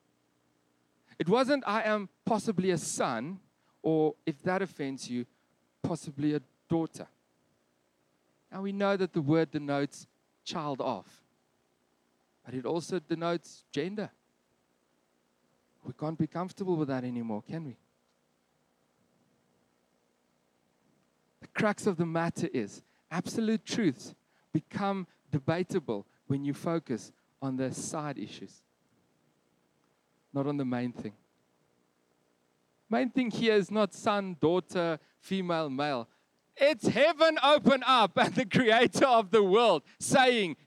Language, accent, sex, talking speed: English, South African, male, 120 wpm